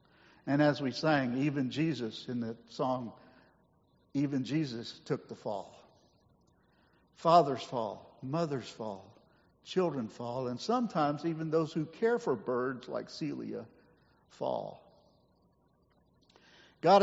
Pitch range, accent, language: 145-195 Hz, American, English